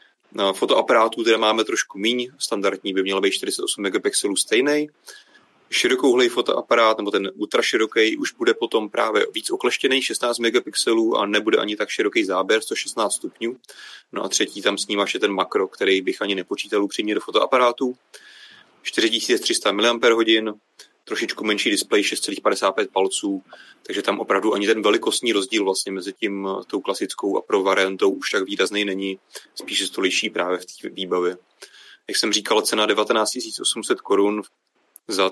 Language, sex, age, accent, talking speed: Czech, male, 30-49, native, 155 wpm